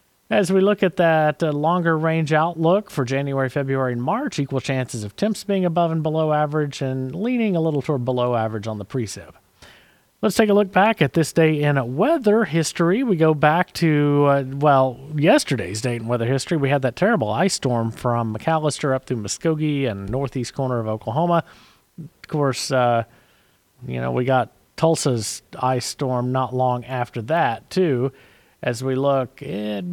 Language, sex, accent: English, male, American